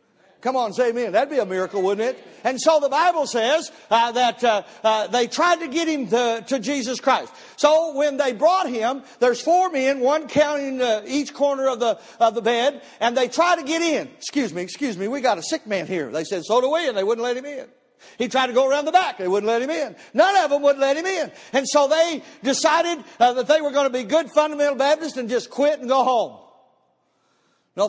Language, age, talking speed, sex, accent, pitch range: English, 60-79, 245 wpm, male, American, 245-315 Hz